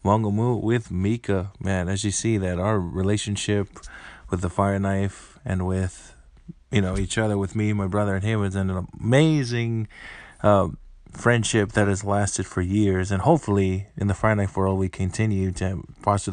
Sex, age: male, 20-39